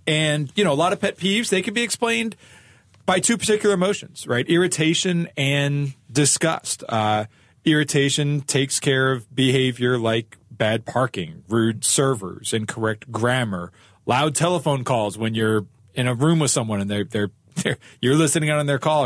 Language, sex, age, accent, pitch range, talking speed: English, male, 40-59, American, 115-160 Hz, 155 wpm